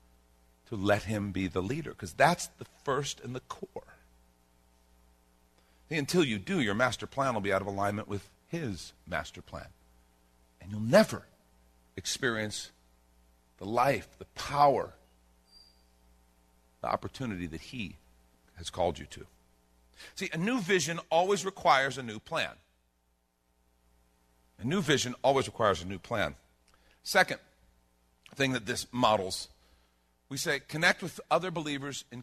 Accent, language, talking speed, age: American, English, 135 wpm, 50-69